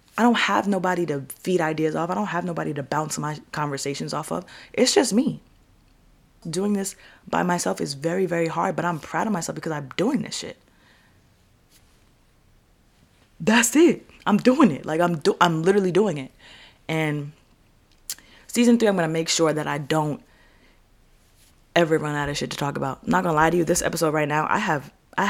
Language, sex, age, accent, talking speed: English, female, 20-39, American, 195 wpm